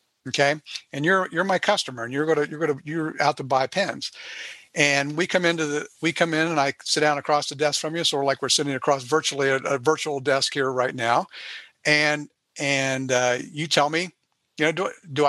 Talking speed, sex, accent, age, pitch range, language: 230 wpm, male, American, 50-69, 135-170 Hz, English